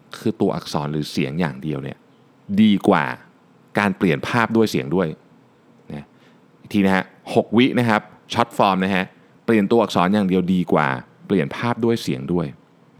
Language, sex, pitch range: Thai, male, 85-120 Hz